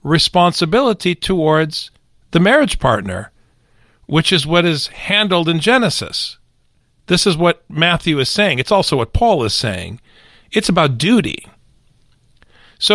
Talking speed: 130 wpm